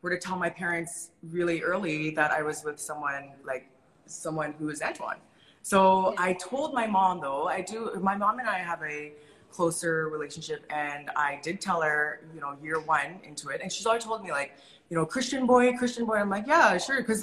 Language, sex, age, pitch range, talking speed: English, female, 20-39, 160-205 Hz, 215 wpm